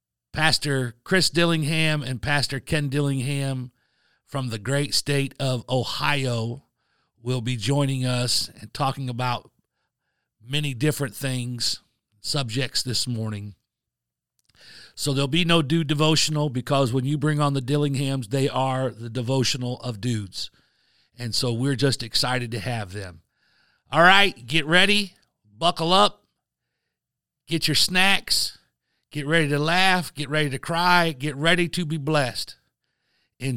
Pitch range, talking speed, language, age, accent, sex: 120-150 Hz, 135 wpm, English, 50-69, American, male